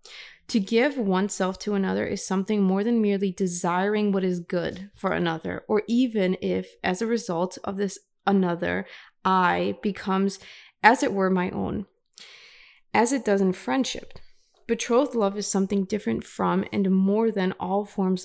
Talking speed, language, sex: 160 wpm, English, female